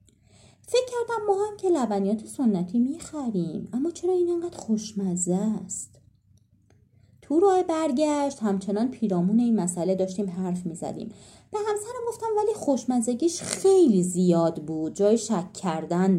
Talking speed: 130 wpm